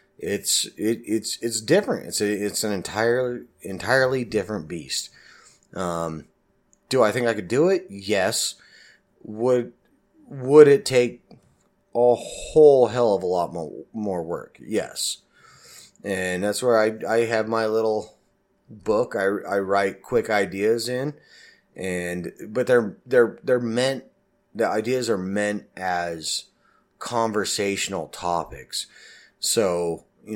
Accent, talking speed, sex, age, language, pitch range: American, 130 wpm, male, 30-49, English, 90-120 Hz